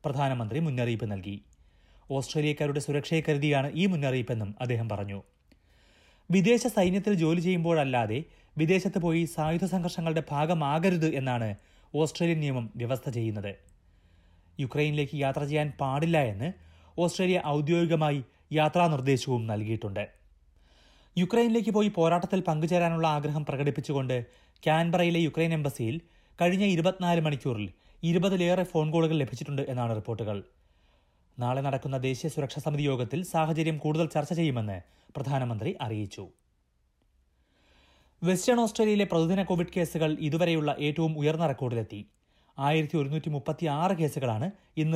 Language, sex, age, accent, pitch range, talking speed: Malayalam, male, 30-49, native, 115-165 Hz, 105 wpm